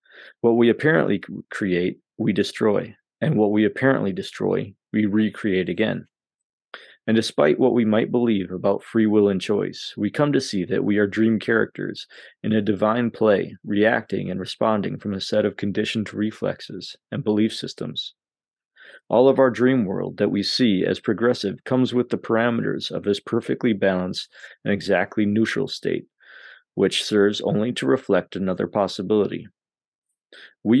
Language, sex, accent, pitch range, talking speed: English, male, American, 100-115 Hz, 155 wpm